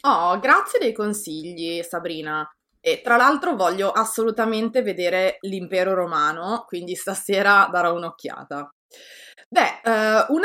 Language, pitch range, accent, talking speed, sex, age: Italian, 180-260 Hz, native, 110 wpm, female, 20-39